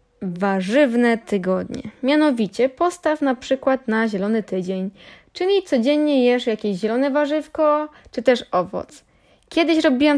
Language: Polish